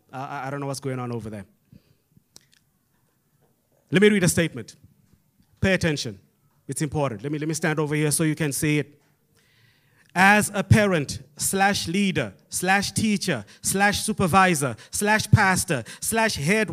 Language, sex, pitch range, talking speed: English, male, 160-240 Hz, 150 wpm